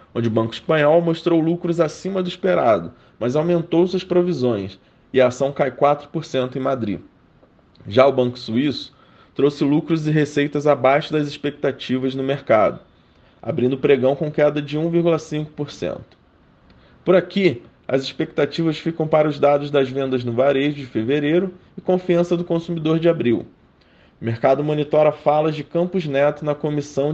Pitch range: 135-165 Hz